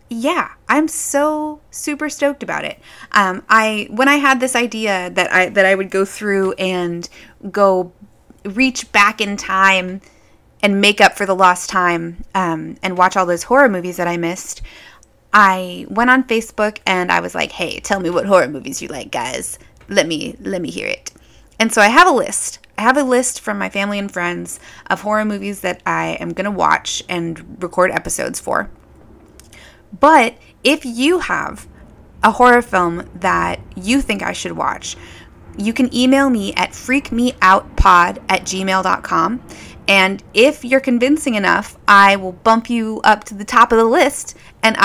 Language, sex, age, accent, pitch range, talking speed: English, female, 20-39, American, 190-245 Hz, 175 wpm